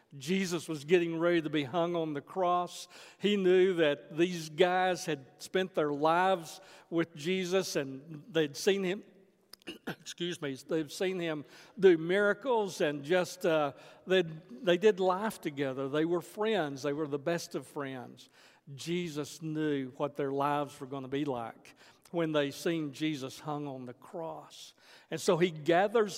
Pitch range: 150-185 Hz